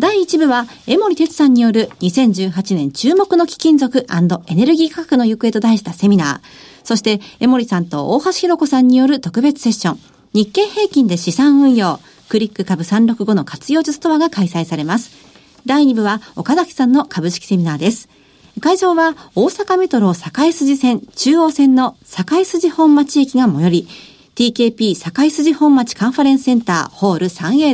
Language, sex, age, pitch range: Japanese, female, 50-69, 200-295 Hz